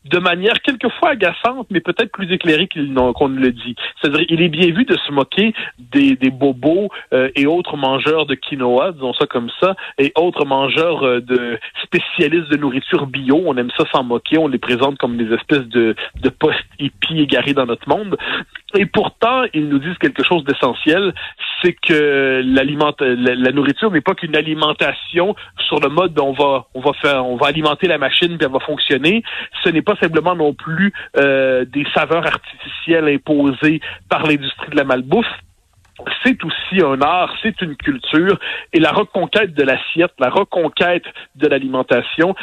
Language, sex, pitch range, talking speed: French, male, 135-175 Hz, 185 wpm